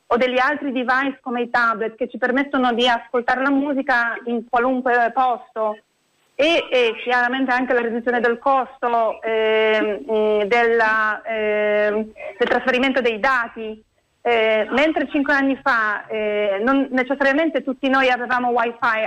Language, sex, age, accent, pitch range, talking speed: Italian, female, 40-59, native, 225-265 Hz, 135 wpm